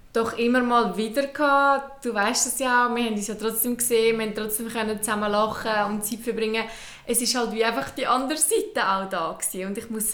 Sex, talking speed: female, 220 wpm